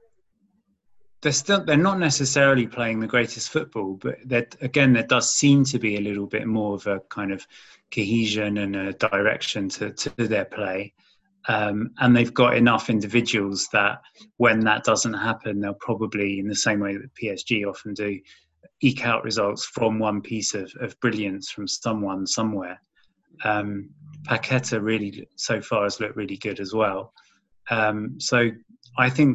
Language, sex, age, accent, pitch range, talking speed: English, male, 20-39, British, 100-125 Hz, 160 wpm